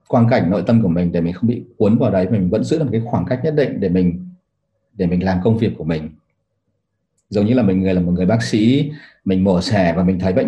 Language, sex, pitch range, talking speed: Vietnamese, male, 90-115 Hz, 275 wpm